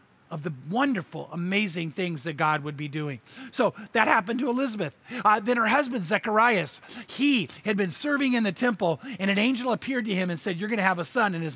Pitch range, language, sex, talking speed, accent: 170-235 Hz, English, male, 220 wpm, American